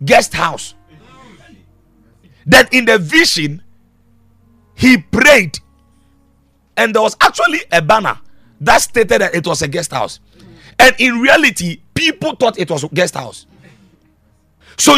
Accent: Nigerian